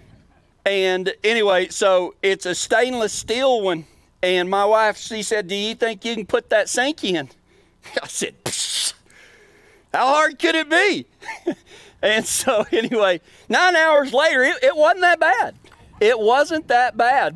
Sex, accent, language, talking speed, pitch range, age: male, American, English, 150 wpm, 190-275 Hz, 40-59